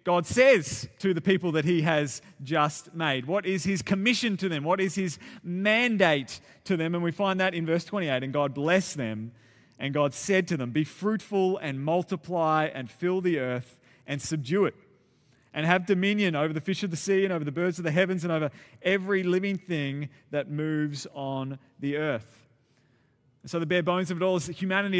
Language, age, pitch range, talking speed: English, 30-49, 145-200 Hz, 205 wpm